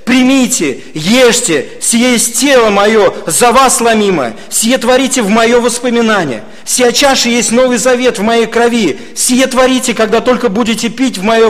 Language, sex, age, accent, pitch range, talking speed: Russian, male, 40-59, native, 145-245 Hz, 150 wpm